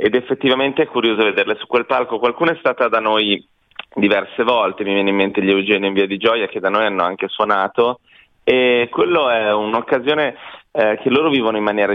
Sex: male